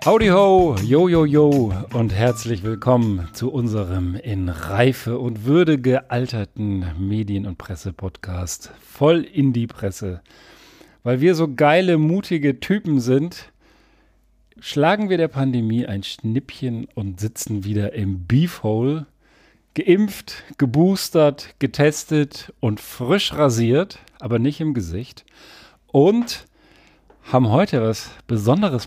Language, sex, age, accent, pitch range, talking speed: German, male, 40-59, German, 105-155 Hz, 115 wpm